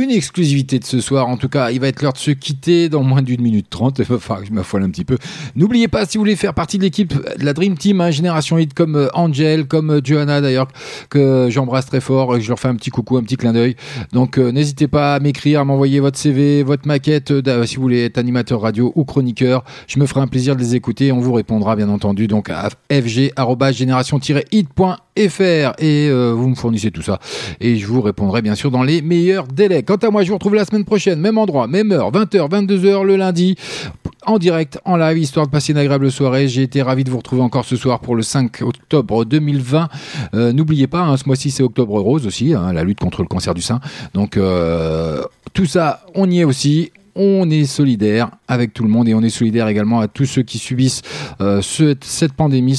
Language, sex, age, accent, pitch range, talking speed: French, male, 40-59, French, 120-155 Hz, 235 wpm